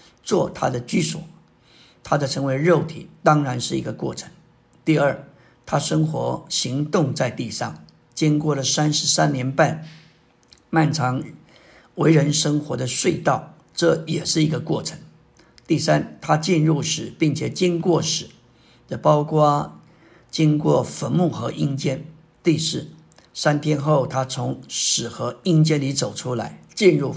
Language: Chinese